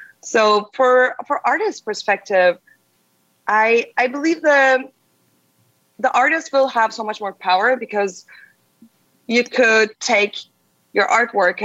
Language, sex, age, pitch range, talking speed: English, female, 20-39, 180-245 Hz, 120 wpm